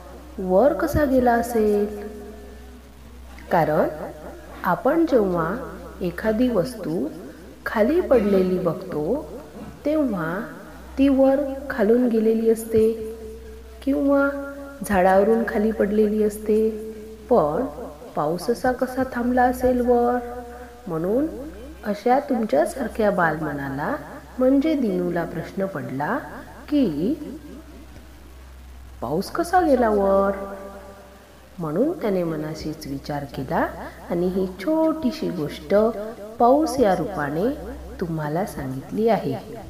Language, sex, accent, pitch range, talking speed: Marathi, female, native, 155-250 Hz, 85 wpm